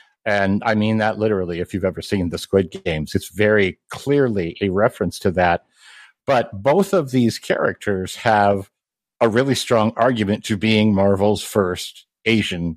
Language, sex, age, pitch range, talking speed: English, male, 50-69, 100-125 Hz, 160 wpm